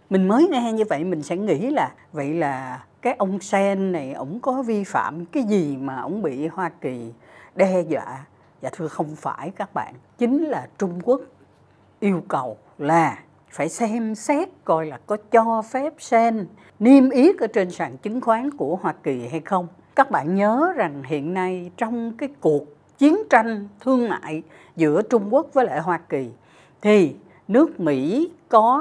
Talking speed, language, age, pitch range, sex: 180 wpm, Vietnamese, 60-79, 165-250 Hz, female